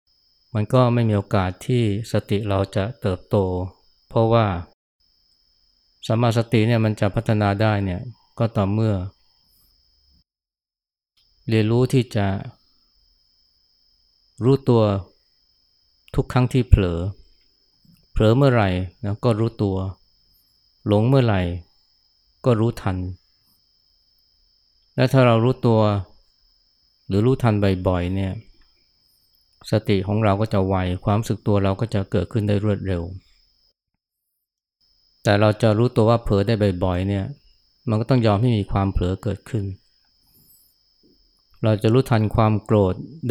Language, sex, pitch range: Thai, male, 90-110 Hz